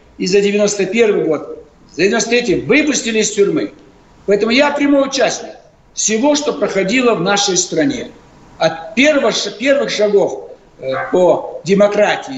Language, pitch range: Russian, 185-255 Hz